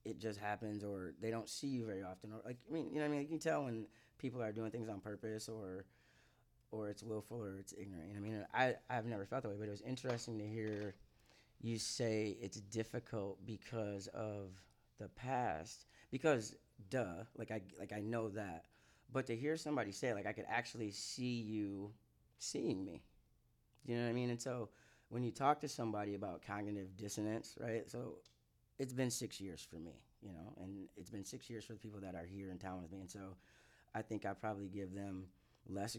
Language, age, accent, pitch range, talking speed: English, 20-39, American, 95-115 Hz, 215 wpm